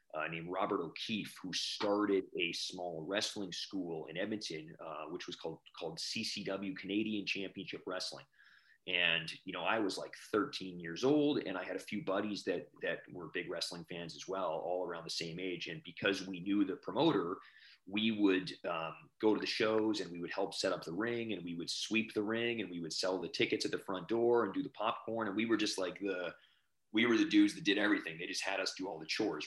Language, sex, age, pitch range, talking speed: English, male, 30-49, 90-110 Hz, 225 wpm